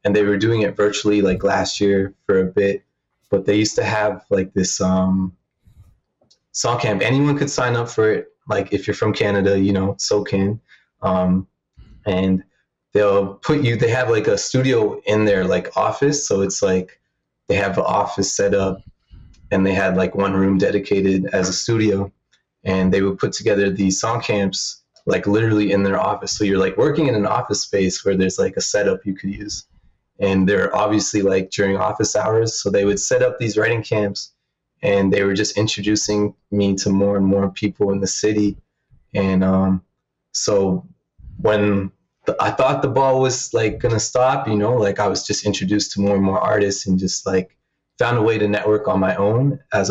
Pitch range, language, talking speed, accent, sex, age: 95-105 Hz, English, 200 wpm, American, male, 20-39